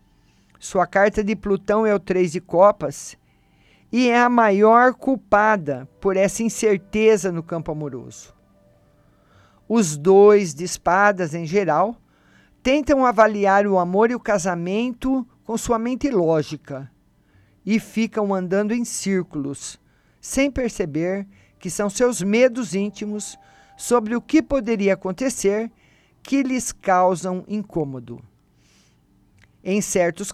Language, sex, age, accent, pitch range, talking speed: Portuguese, male, 50-69, Brazilian, 160-225 Hz, 120 wpm